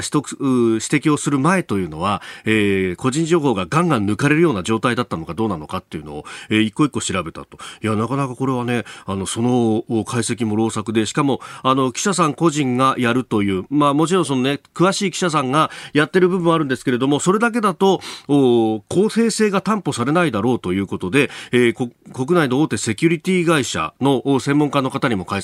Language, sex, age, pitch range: Japanese, male, 40-59, 110-160 Hz